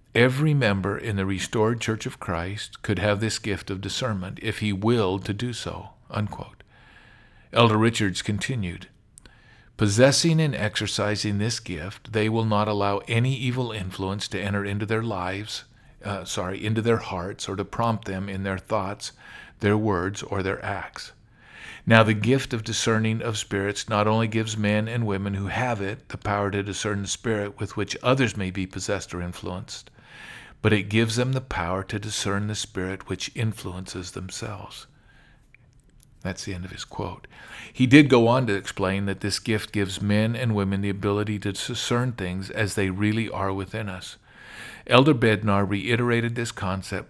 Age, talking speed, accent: 50-69, 175 wpm, American